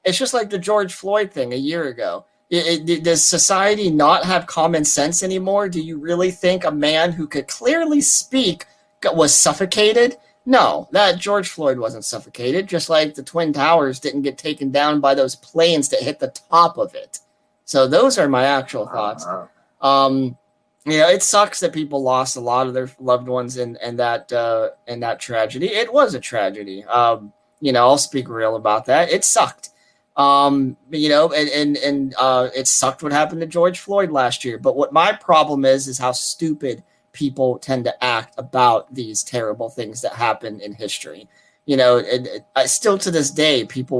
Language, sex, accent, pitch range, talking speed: English, male, American, 125-175 Hz, 195 wpm